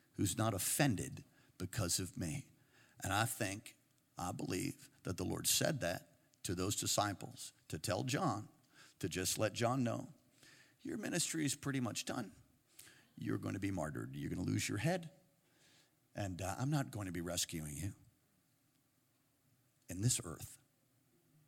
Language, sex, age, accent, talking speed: English, male, 50-69, American, 150 wpm